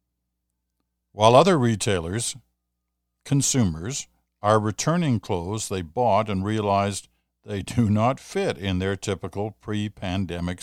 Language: English